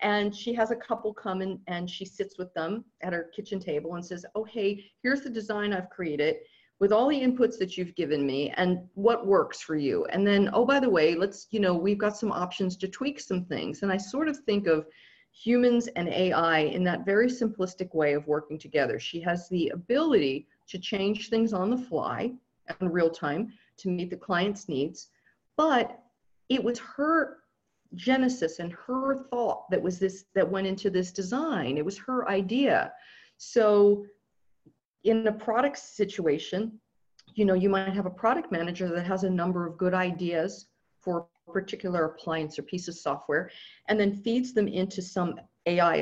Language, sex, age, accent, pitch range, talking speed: English, female, 40-59, American, 175-225 Hz, 190 wpm